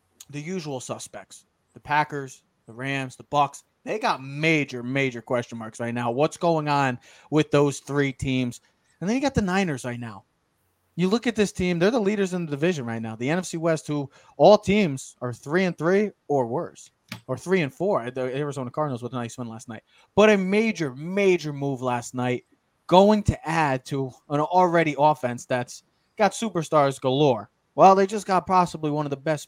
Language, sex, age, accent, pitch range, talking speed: English, male, 20-39, American, 130-180 Hz, 195 wpm